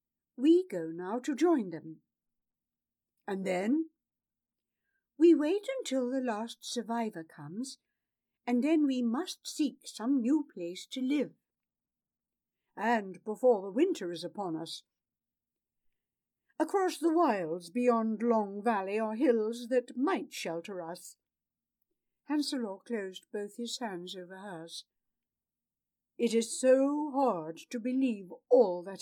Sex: female